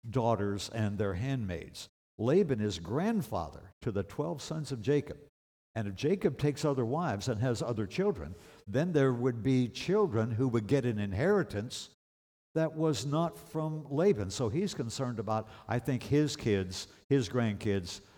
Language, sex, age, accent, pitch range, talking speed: English, male, 60-79, American, 95-135 Hz, 160 wpm